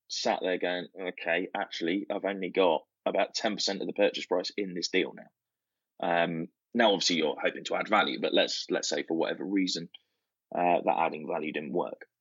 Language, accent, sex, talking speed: English, British, male, 190 wpm